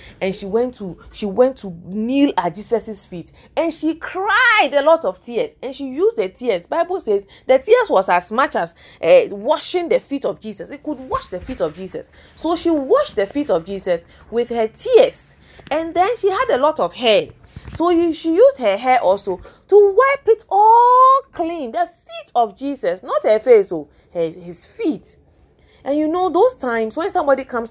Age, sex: 30-49, female